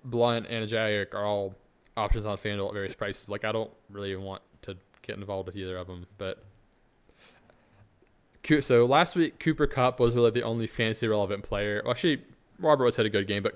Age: 20-39